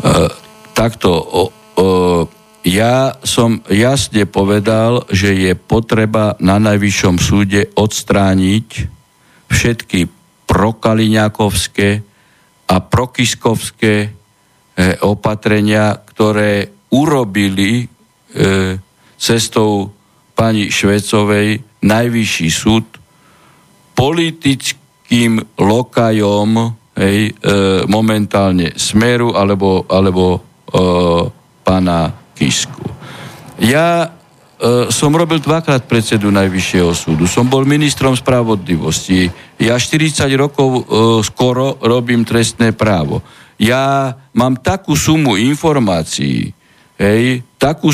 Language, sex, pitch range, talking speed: Slovak, male, 100-125 Hz, 85 wpm